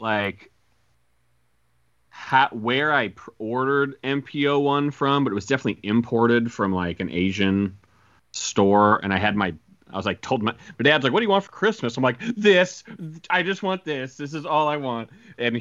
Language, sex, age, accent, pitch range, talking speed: English, male, 30-49, American, 105-145 Hz, 195 wpm